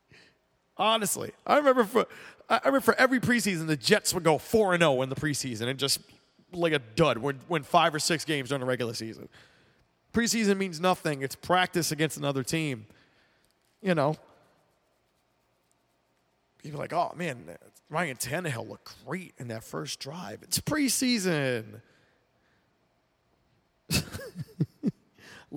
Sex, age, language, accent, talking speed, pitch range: male, 30-49, English, American, 140 wpm, 135-185 Hz